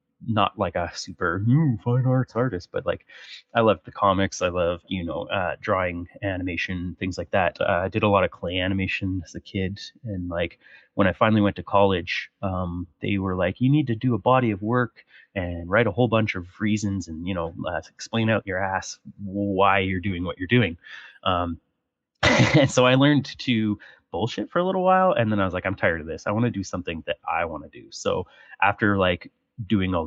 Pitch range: 90-110 Hz